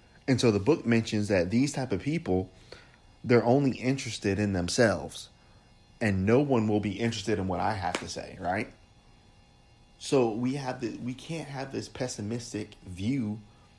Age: 30-49